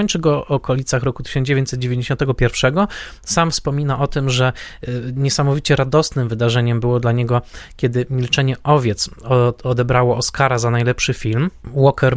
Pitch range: 125-145 Hz